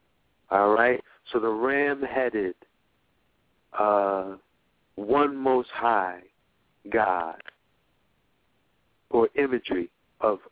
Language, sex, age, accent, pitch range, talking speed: English, male, 60-79, American, 110-130 Hz, 80 wpm